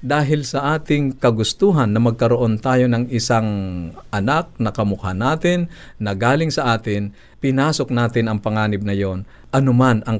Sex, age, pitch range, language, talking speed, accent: male, 50-69, 100-125 Hz, Filipino, 145 wpm, native